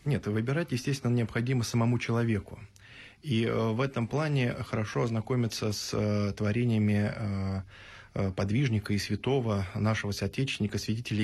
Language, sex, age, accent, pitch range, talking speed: Russian, male, 20-39, native, 100-120 Hz, 105 wpm